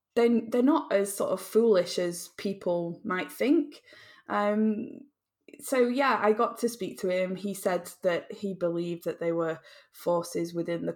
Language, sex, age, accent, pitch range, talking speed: English, female, 10-29, British, 170-220 Hz, 165 wpm